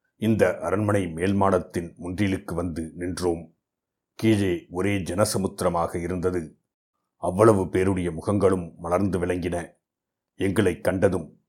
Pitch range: 90-100 Hz